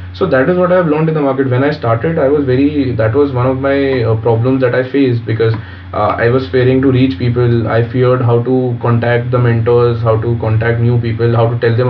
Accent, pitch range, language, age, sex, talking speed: Indian, 115-130 Hz, English, 20-39, male, 250 wpm